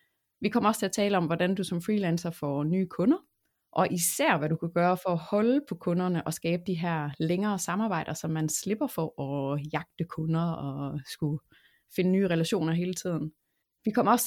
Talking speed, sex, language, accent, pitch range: 200 wpm, female, Danish, native, 160-215 Hz